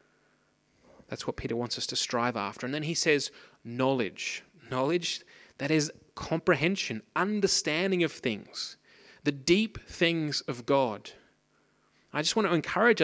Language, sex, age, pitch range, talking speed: English, male, 30-49, 125-160 Hz, 140 wpm